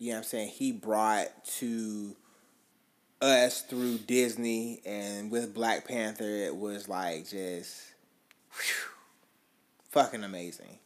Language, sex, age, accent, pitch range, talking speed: English, male, 20-39, American, 105-120 Hz, 120 wpm